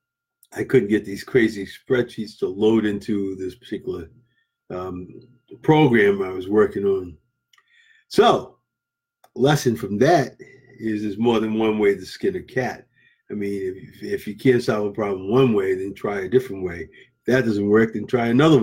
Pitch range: 110-170 Hz